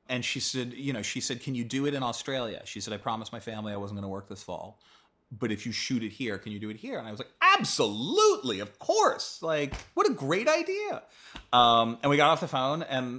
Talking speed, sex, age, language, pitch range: 260 wpm, male, 30-49, English, 110-145 Hz